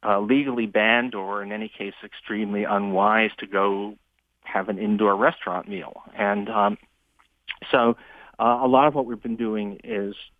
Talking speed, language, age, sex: 160 wpm, English, 50-69, male